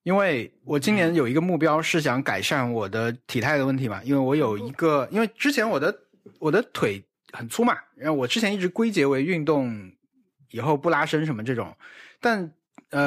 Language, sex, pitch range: Chinese, male, 130-175 Hz